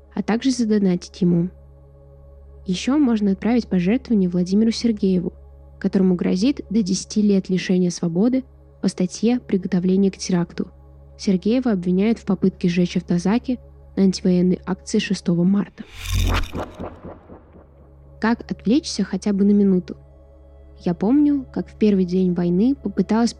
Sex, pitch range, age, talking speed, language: female, 180-210 Hz, 10-29, 120 wpm, Russian